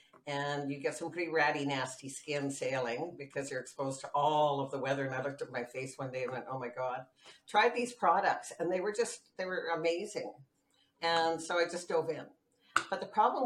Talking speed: 220 wpm